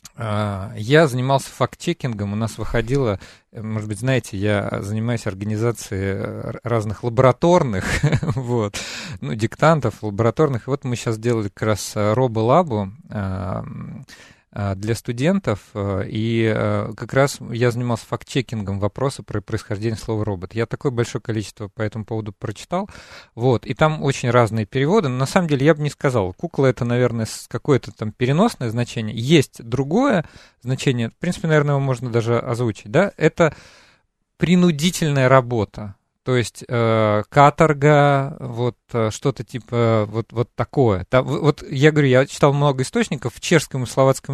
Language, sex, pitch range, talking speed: Russian, male, 110-145 Hz, 145 wpm